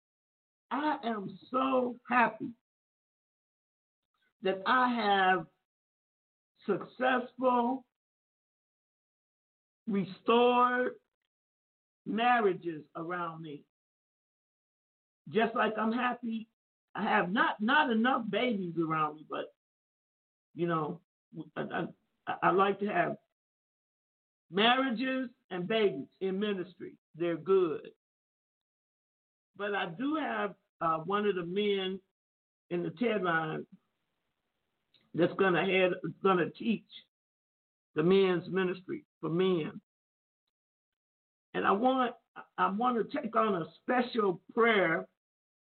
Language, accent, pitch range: English, American, 180-235 Hz